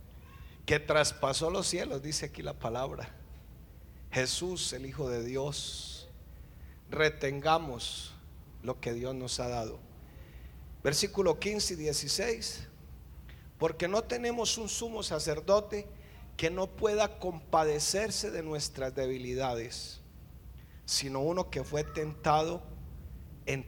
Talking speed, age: 110 wpm, 40-59